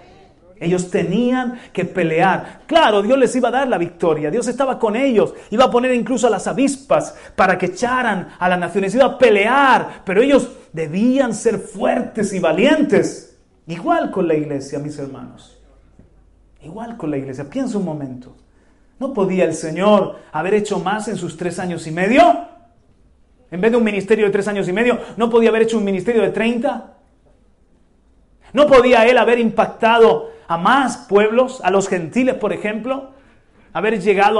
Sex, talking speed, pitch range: male, 170 wpm, 190-245 Hz